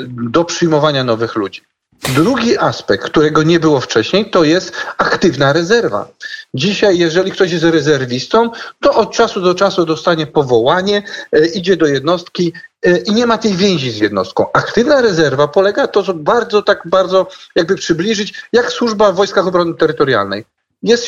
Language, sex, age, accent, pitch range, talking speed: Polish, male, 40-59, native, 155-205 Hz, 155 wpm